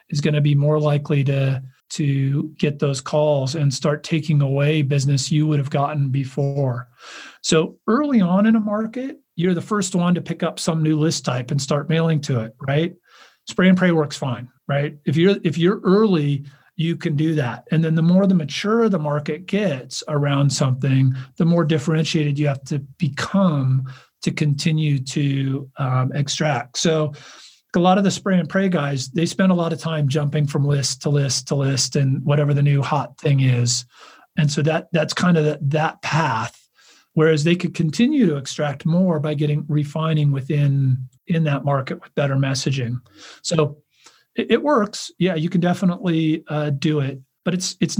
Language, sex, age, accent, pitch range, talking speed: English, male, 40-59, American, 140-170 Hz, 190 wpm